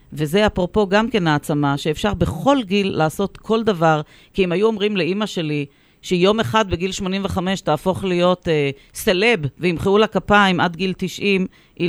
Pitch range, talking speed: 140-170 Hz, 160 wpm